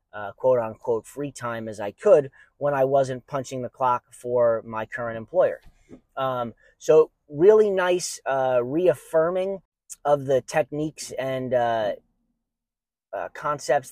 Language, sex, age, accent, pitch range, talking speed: English, male, 30-49, American, 125-155 Hz, 130 wpm